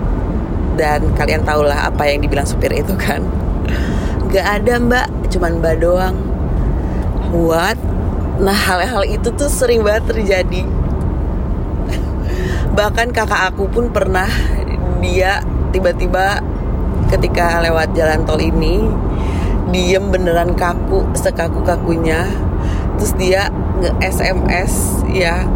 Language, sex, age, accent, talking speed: Indonesian, female, 20-39, native, 105 wpm